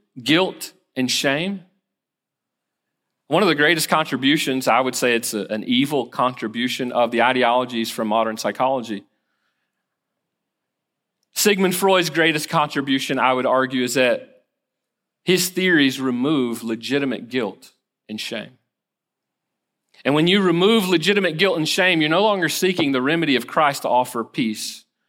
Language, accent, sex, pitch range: English, American, male, 125-185 Hz